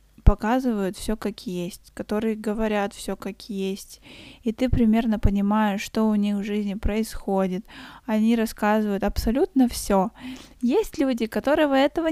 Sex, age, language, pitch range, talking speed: female, 20-39, Russian, 210-255 Hz, 135 wpm